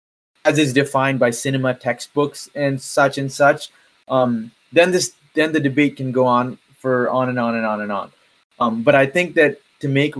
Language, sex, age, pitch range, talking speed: English, male, 20-39, 115-140 Hz, 200 wpm